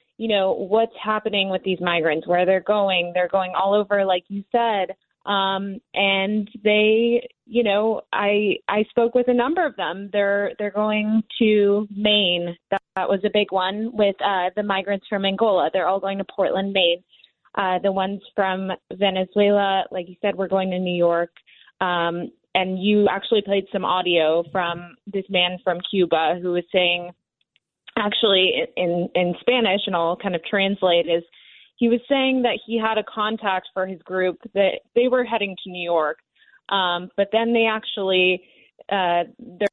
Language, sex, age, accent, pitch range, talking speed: English, female, 20-39, American, 180-210 Hz, 175 wpm